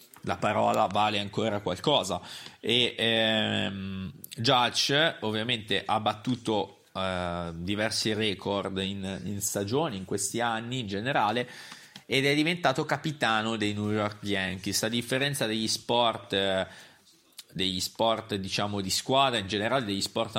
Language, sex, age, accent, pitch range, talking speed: Italian, male, 30-49, native, 95-110 Hz, 130 wpm